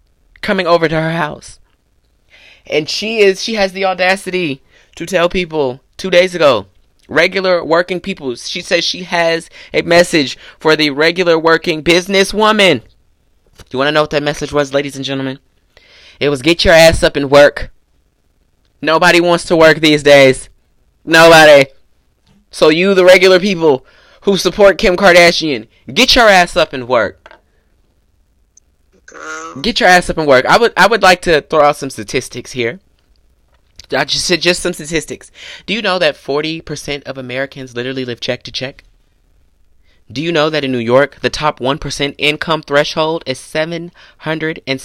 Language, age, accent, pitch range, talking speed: English, 20-39, American, 130-170 Hz, 170 wpm